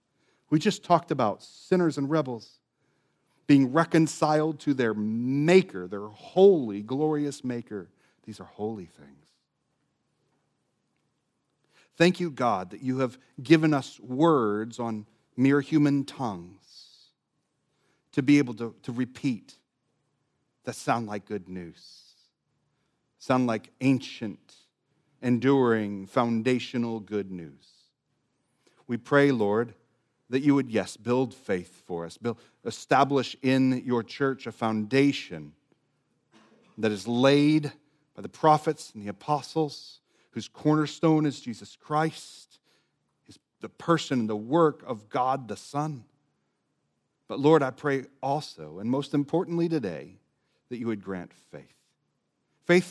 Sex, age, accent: male, 40-59, American